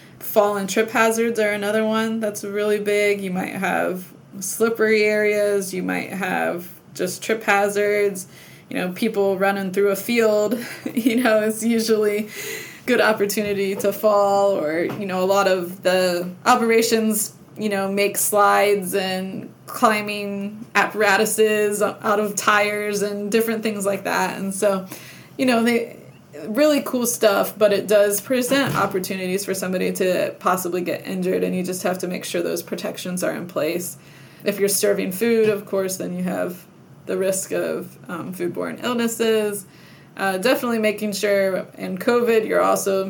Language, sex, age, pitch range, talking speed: English, female, 20-39, 190-215 Hz, 155 wpm